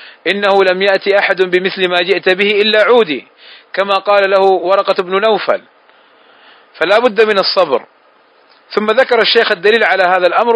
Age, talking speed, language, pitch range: 40-59, 155 wpm, Arabic, 185-215 Hz